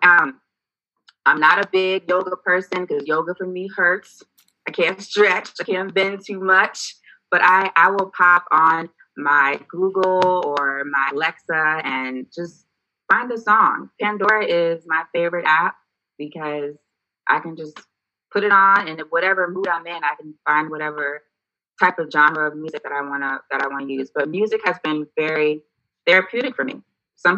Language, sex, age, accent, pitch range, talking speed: English, female, 20-39, American, 155-205 Hz, 165 wpm